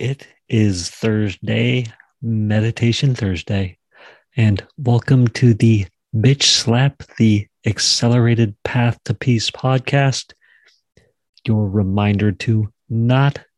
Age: 40-59